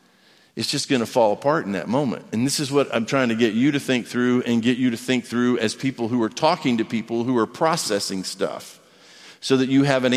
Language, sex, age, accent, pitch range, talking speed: English, male, 50-69, American, 120-165 Hz, 255 wpm